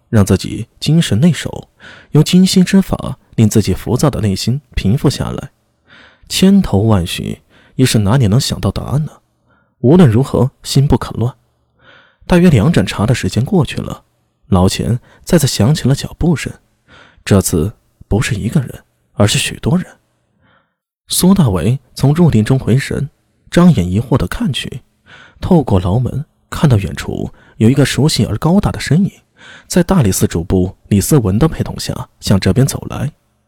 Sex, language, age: male, Chinese, 20-39